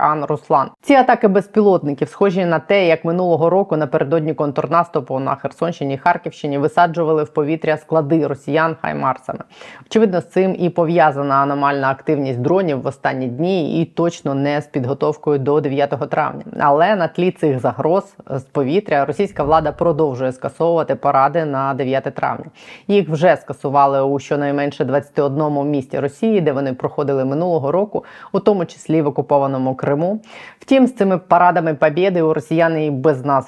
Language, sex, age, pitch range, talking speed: Ukrainian, female, 20-39, 140-165 Hz, 150 wpm